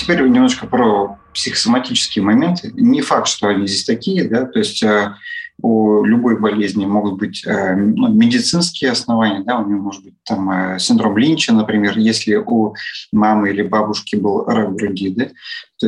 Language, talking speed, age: Russian, 165 wpm, 30-49